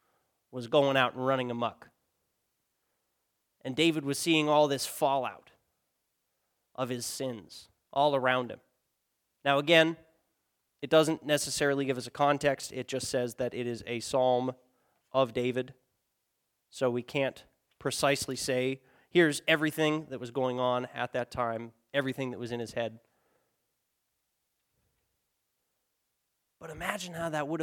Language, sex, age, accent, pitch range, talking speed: English, male, 30-49, American, 125-150 Hz, 135 wpm